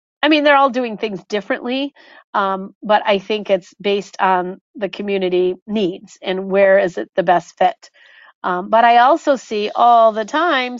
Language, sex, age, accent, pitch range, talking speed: English, female, 40-59, American, 195-225 Hz, 180 wpm